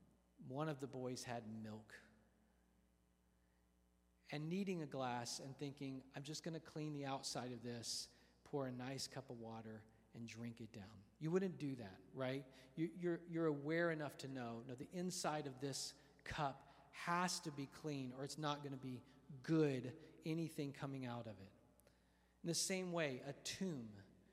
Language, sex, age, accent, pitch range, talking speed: English, male, 40-59, American, 125-170 Hz, 180 wpm